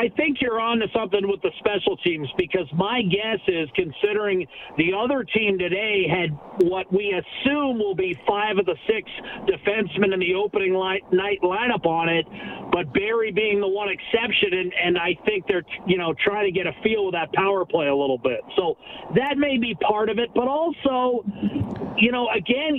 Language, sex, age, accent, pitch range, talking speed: English, male, 50-69, American, 200-260 Hz, 195 wpm